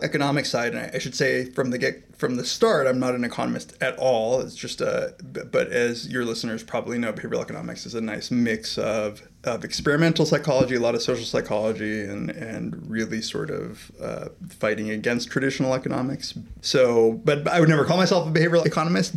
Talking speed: 195 wpm